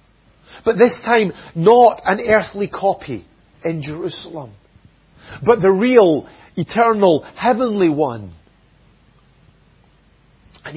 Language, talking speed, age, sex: English, 90 wpm, 50-69, male